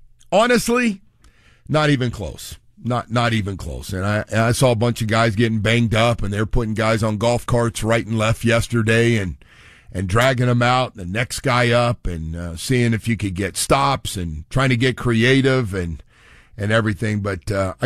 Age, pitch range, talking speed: 50-69, 105-135 Hz, 200 wpm